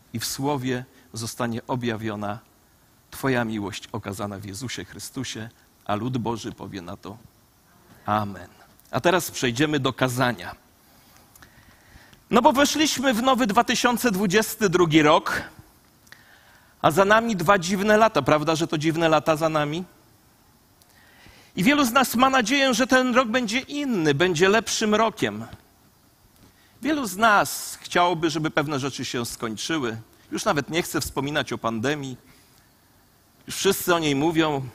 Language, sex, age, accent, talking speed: Polish, male, 40-59, native, 135 wpm